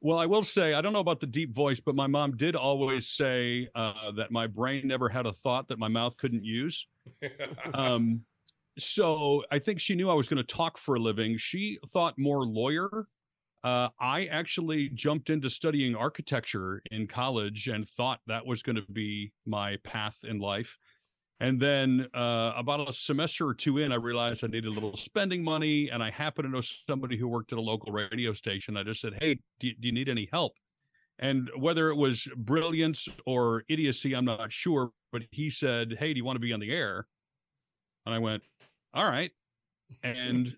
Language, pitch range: English, 115-150 Hz